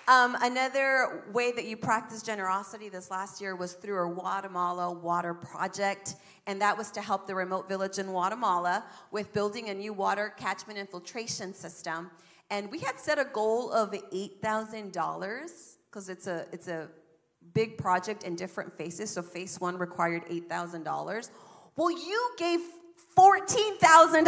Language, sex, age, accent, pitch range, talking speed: English, female, 40-59, American, 185-245 Hz, 165 wpm